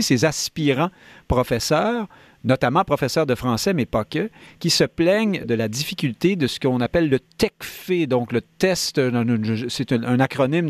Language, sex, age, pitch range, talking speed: French, male, 50-69, 120-160 Hz, 155 wpm